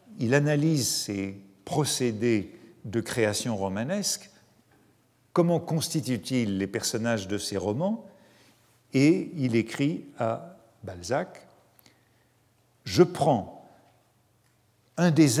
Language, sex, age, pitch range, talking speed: French, male, 50-69, 110-145 Hz, 95 wpm